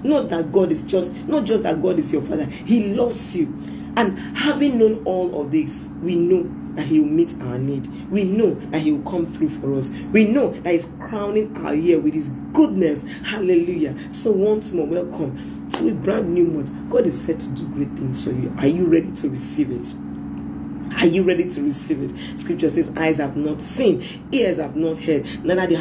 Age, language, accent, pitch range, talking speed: 40-59, English, Nigerian, 150-215 Hz, 210 wpm